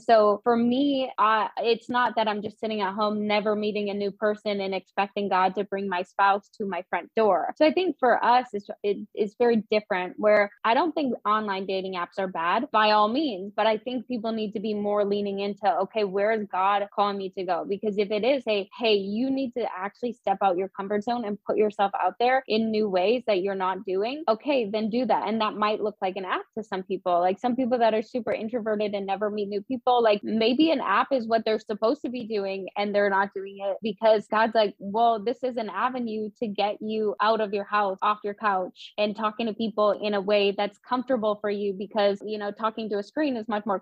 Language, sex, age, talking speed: English, female, 20-39, 240 wpm